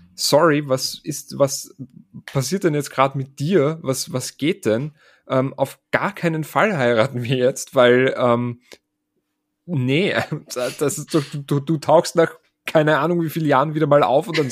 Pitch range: 130-170 Hz